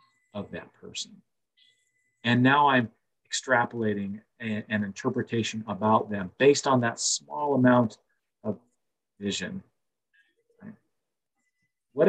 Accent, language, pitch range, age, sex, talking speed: American, English, 105-130 Hz, 40-59, male, 95 wpm